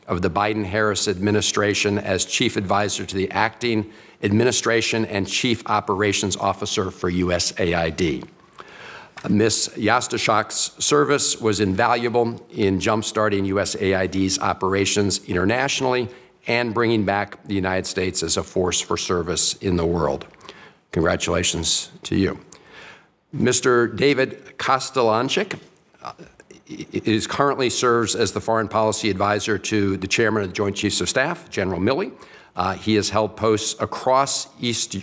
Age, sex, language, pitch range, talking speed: 50-69, male, English, 95-115 Hz, 125 wpm